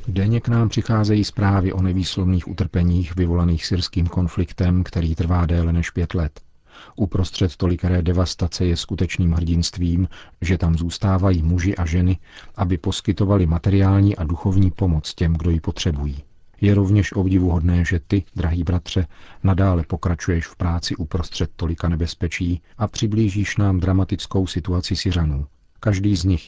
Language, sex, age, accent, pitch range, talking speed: Czech, male, 40-59, native, 85-95 Hz, 140 wpm